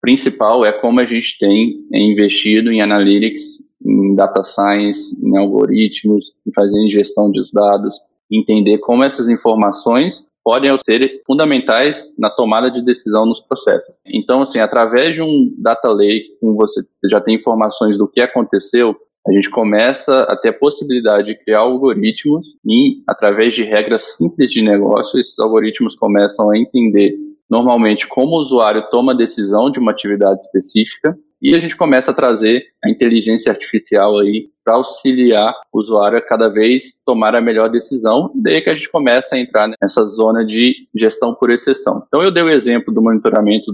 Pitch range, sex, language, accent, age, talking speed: 105-130 Hz, male, Portuguese, Brazilian, 20-39, 165 wpm